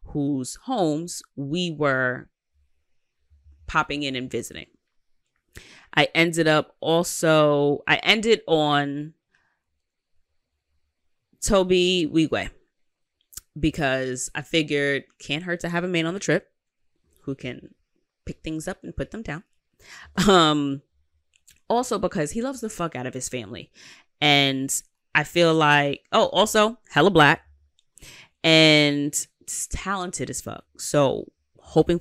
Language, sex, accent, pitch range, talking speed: English, female, American, 130-165 Hz, 120 wpm